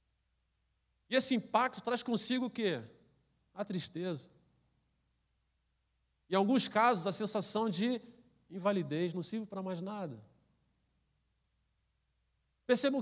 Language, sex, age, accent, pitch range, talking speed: Portuguese, male, 50-69, Brazilian, 140-220 Hz, 100 wpm